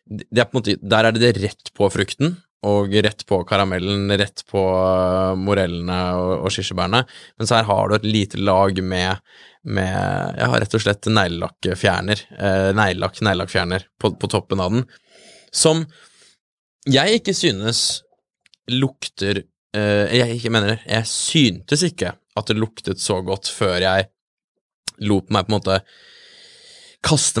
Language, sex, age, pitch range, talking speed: English, male, 20-39, 95-115 Hz, 145 wpm